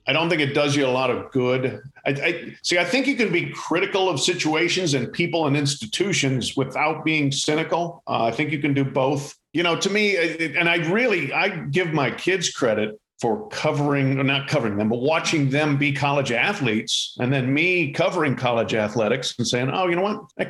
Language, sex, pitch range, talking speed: English, male, 135-170 Hz, 215 wpm